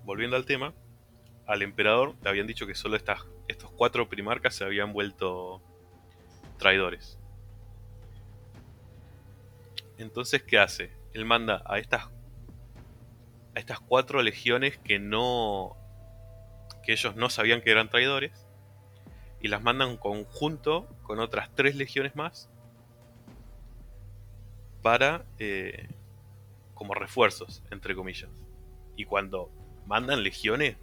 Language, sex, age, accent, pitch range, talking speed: Spanish, male, 20-39, Argentinian, 100-120 Hz, 115 wpm